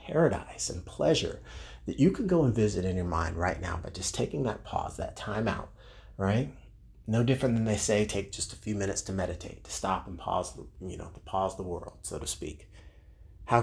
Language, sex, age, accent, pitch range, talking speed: English, male, 30-49, American, 85-105 Hz, 220 wpm